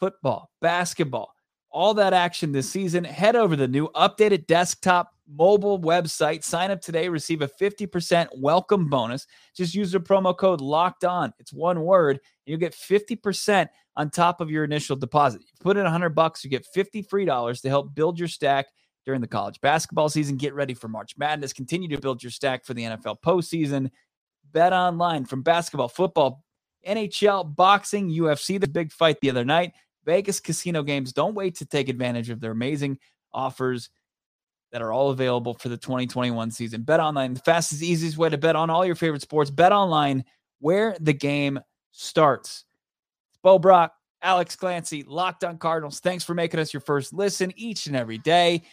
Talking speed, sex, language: 175 wpm, male, English